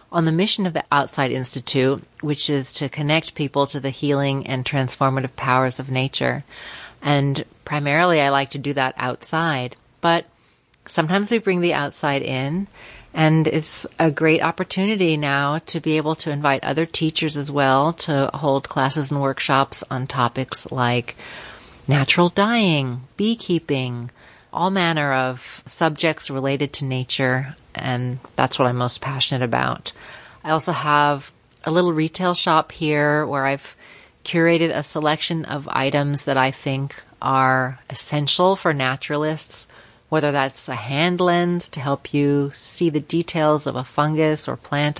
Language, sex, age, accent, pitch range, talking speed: English, female, 30-49, American, 135-160 Hz, 150 wpm